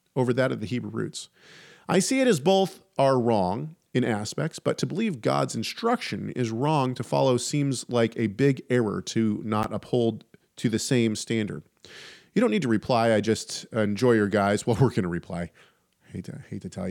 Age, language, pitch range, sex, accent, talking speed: 40-59, English, 110-150 Hz, male, American, 195 wpm